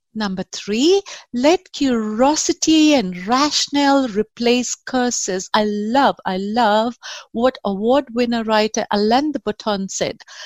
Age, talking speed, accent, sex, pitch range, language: 50-69, 115 wpm, Indian, female, 220-300 Hz, English